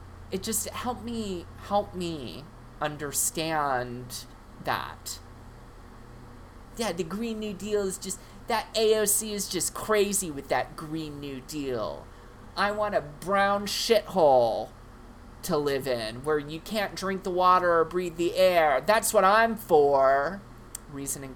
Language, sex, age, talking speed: English, male, 30-49, 135 wpm